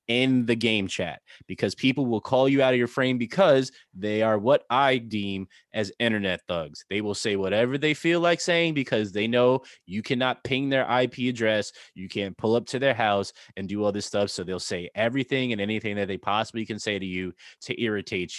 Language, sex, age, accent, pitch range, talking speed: English, male, 20-39, American, 100-130 Hz, 215 wpm